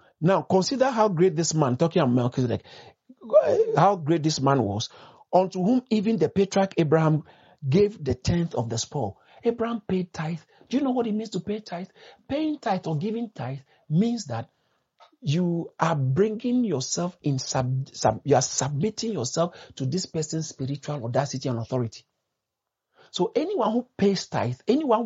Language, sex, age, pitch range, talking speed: English, male, 50-69, 145-215 Hz, 160 wpm